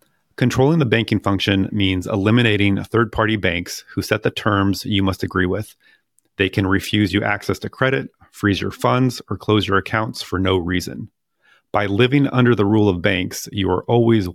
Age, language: 30-49, English